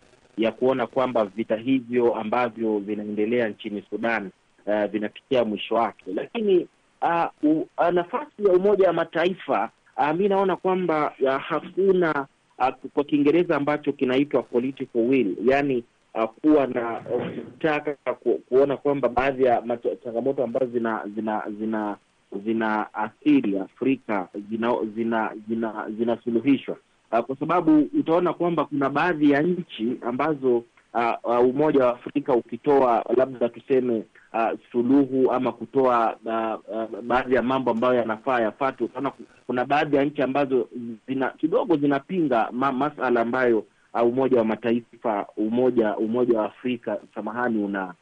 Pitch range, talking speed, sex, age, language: 115-150 Hz, 130 wpm, male, 30-49, Swahili